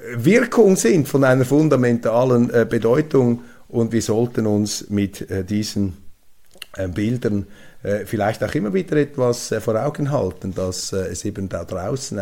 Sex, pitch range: male, 100-140 Hz